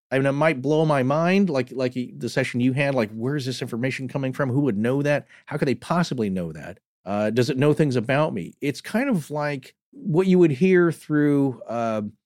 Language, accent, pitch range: English, American, 110-155 Hz